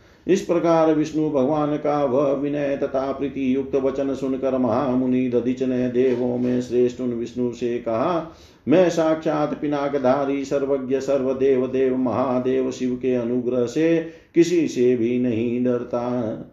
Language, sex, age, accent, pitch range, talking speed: Hindi, male, 50-69, native, 130-150 Hz, 140 wpm